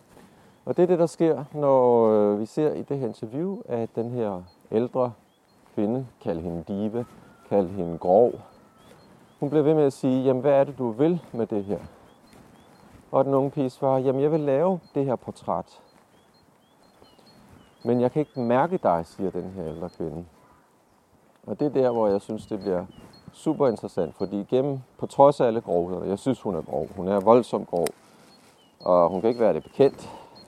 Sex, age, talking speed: male, 40-59, 190 wpm